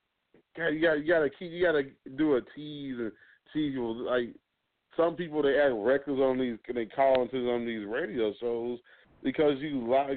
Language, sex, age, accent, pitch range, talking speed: English, male, 40-59, American, 115-135 Hz, 175 wpm